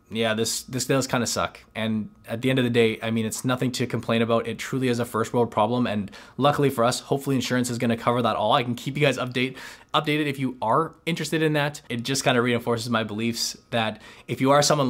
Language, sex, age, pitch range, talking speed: English, male, 20-39, 115-135 Hz, 260 wpm